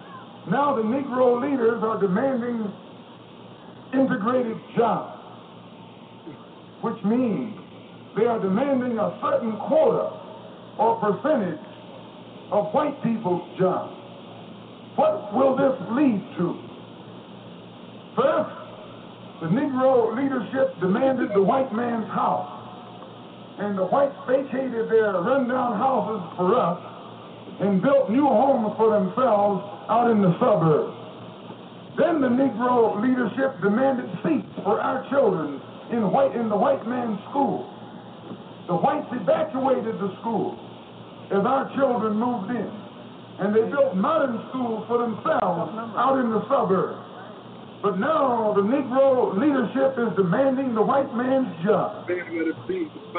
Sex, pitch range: male, 210-265 Hz